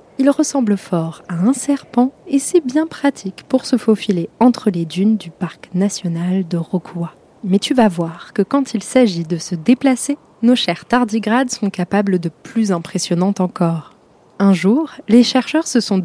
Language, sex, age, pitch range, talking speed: French, female, 20-39, 185-245 Hz, 175 wpm